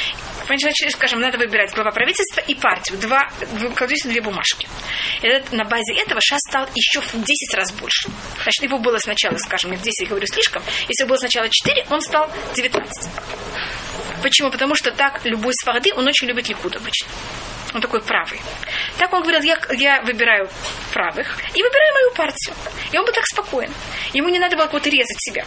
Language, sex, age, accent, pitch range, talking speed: Russian, female, 20-39, native, 235-295 Hz, 180 wpm